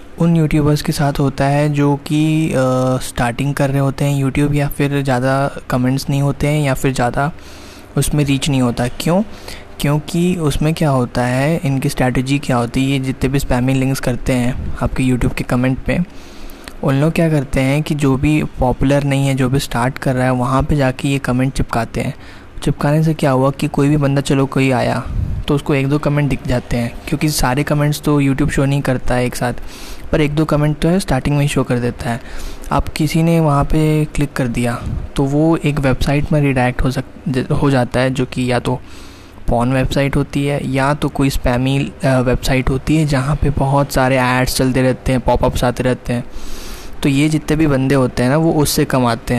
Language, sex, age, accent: Hindi, male, 20-39, native